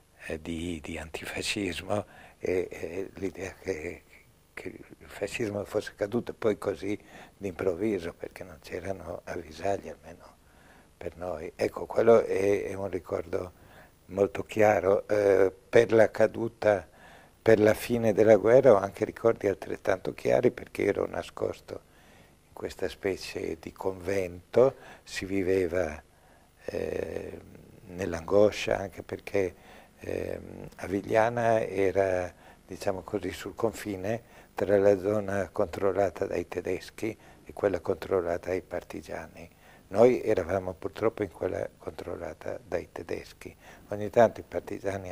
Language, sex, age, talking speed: Italian, male, 60-79, 115 wpm